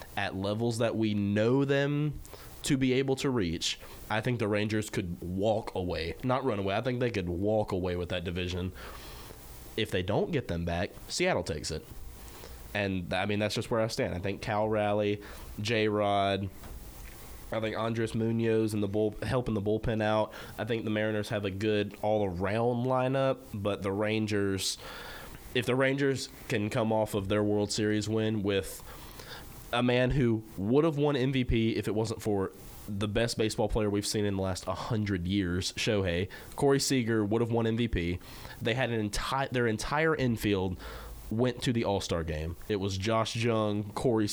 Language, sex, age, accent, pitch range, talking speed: English, male, 20-39, American, 100-120 Hz, 185 wpm